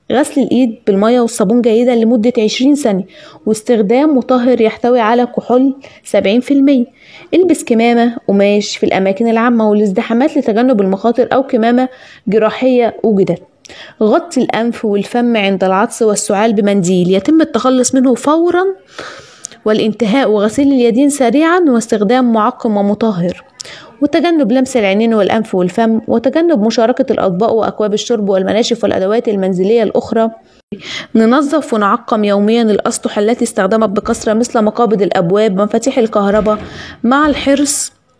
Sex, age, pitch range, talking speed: female, 20-39, 210-250 Hz, 115 wpm